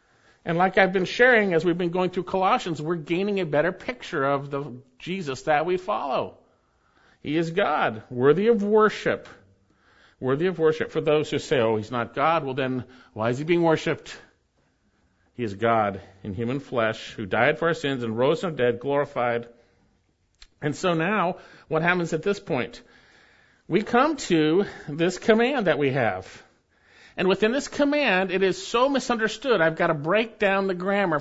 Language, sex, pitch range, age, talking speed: English, male, 140-220 Hz, 50-69, 180 wpm